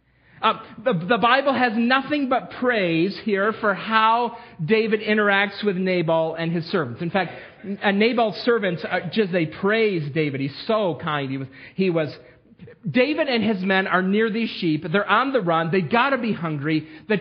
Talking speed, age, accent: 180 wpm, 40-59, American